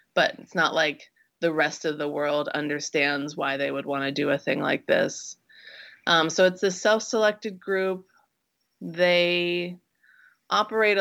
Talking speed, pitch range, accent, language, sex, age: 155 wpm, 145-175 Hz, American, English, female, 30-49